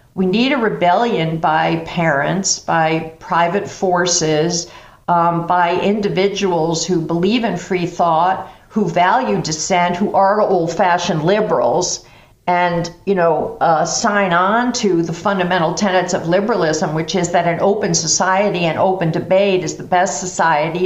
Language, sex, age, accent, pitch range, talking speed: English, female, 50-69, American, 165-195 Hz, 140 wpm